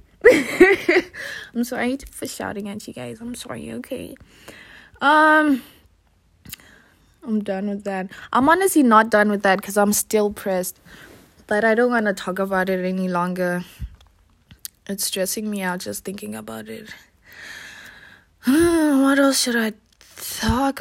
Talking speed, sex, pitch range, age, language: 140 wpm, female, 195-255 Hz, 20-39, English